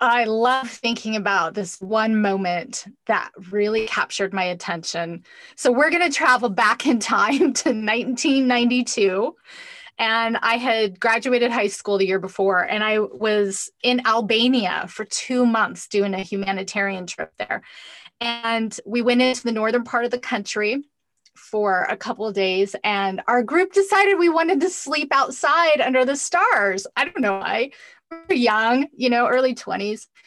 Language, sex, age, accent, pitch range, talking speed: English, female, 20-39, American, 205-260 Hz, 155 wpm